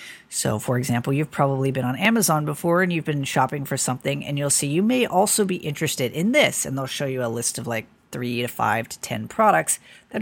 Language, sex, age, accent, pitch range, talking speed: English, female, 40-59, American, 125-180 Hz, 235 wpm